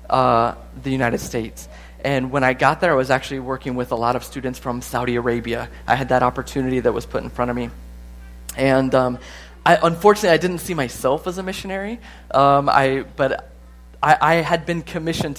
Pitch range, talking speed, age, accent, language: 115-140 Hz, 200 wpm, 30-49, American, English